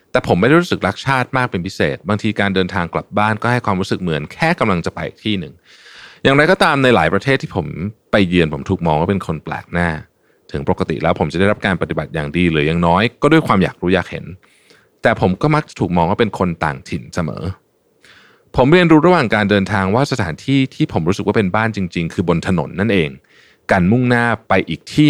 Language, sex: Thai, male